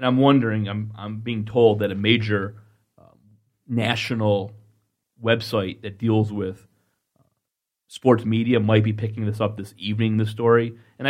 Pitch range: 110-140 Hz